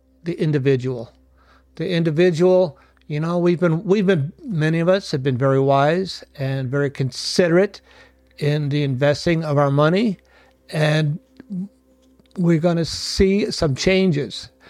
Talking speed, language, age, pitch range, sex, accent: 135 wpm, English, 60-79, 135-170 Hz, male, American